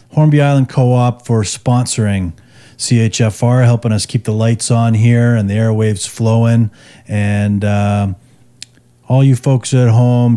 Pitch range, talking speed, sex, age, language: 105-125 Hz, 140 wpm, male, 40-59, English